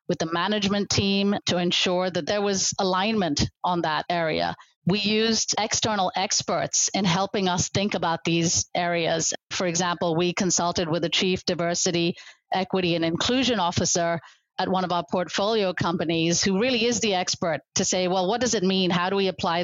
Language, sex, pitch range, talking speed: English, female, 175-215 Hz, 175 wpm